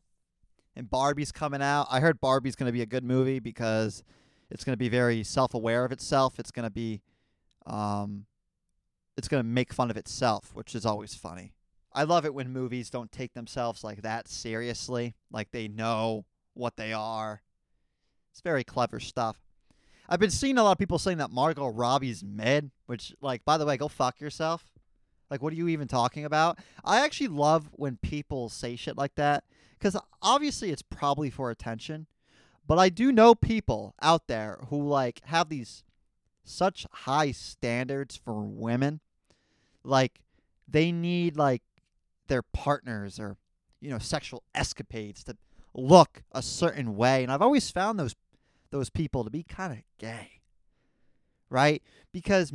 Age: 20-39